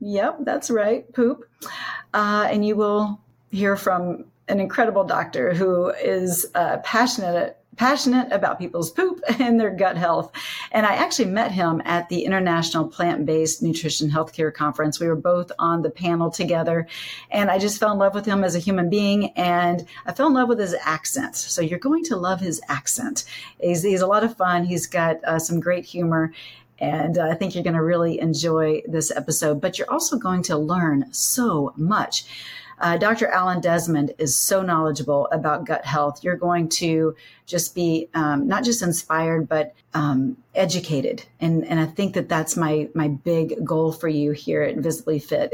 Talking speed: 185 wpm